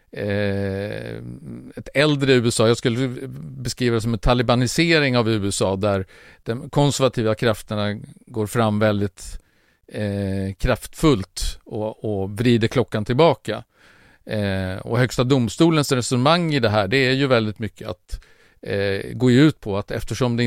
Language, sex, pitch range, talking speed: Swedish, male, 105-130 Hz, 130 wpm